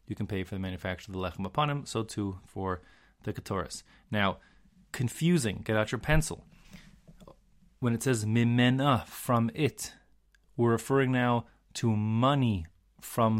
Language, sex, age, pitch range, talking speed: English, male, 30-49, 105-130 Hz, 150 wpm